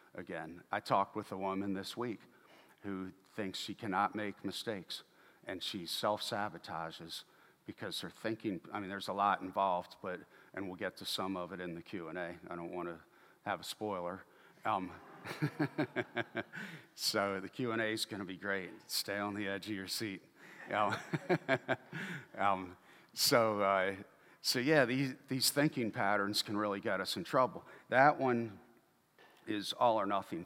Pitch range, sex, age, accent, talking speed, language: 95-115 Hz, male, 50-69, American, 160 wpm, English